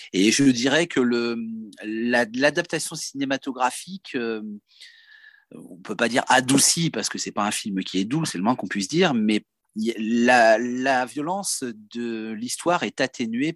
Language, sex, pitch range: French, male, 110-155 Hz